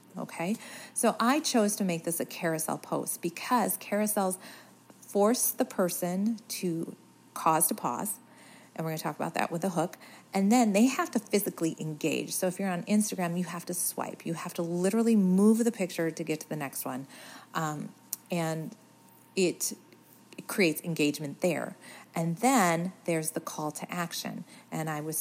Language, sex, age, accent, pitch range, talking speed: English, female, 40-59, American, 170-220 Hz, 180 wpm